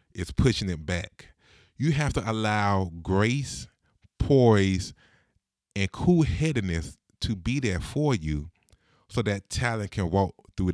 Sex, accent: male, American